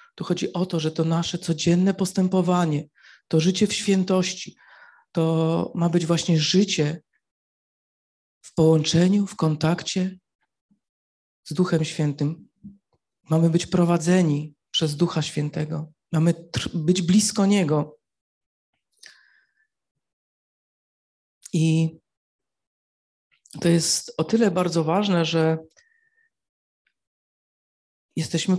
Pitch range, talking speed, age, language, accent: 160-195 Hz, 90 wpm, 40-59, Polish, native